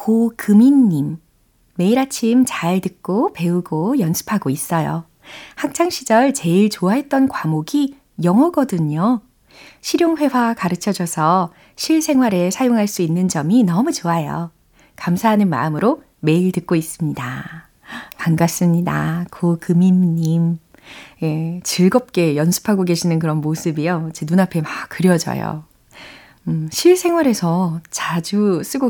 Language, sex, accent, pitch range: Korean, female, native, 160-215 Hz